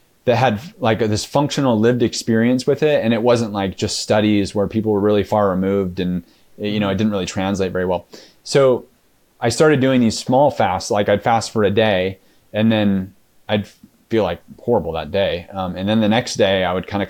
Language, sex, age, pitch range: English, male, 30-49, 95-115 Hz